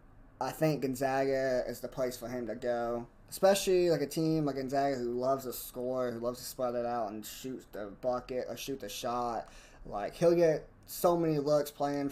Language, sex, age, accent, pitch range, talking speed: English, male, 20-39, American, 120-145 Hz, 205 wpm